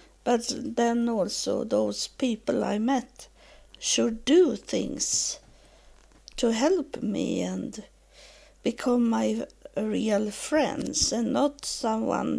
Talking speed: 100 wpm